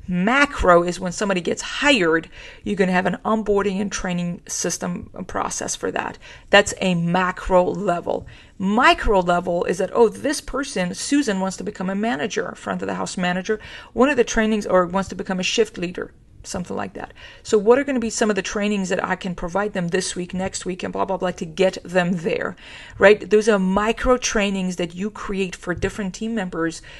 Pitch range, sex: 180-220 Hz, female